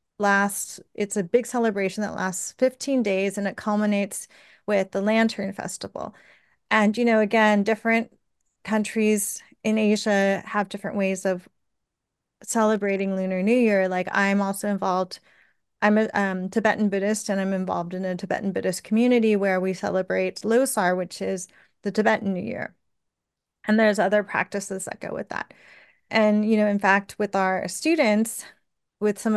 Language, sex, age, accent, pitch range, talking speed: English, female, 30-49, American, 195-220 Hz, 155 wpm